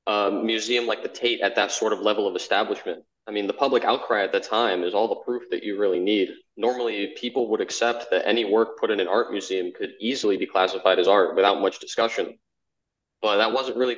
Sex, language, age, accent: male, English, 20-39, American